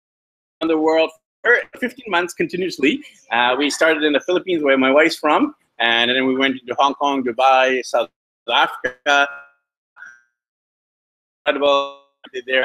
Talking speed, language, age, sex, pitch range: 130 wpm, English, 30-49, male, 125-160 Hz